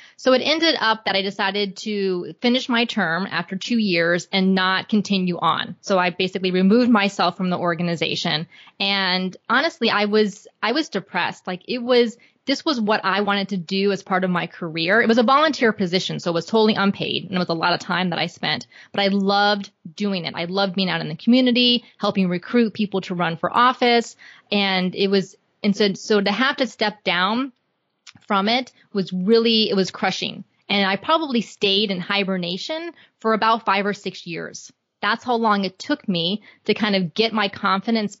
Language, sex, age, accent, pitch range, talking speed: English, female, 20-39, American, 185-225 Hz, 200 wpm